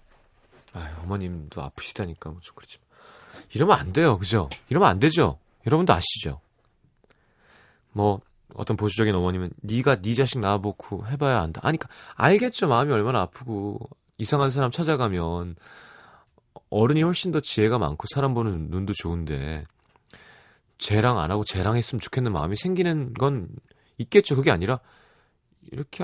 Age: 30-49